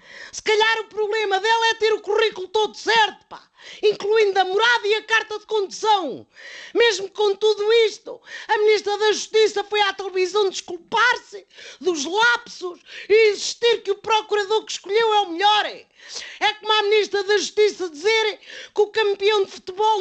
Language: Portuguese